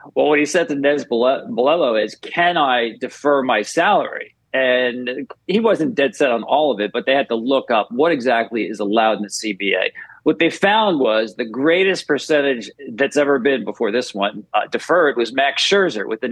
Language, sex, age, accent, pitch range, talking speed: English, male, 40-59, American, 125-165 Hz, 200 wpm